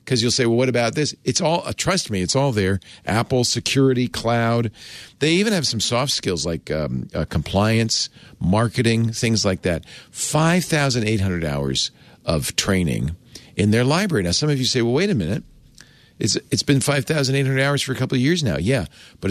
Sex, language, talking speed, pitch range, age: male, English, 190 wpm, 110-140 Hz, 50-69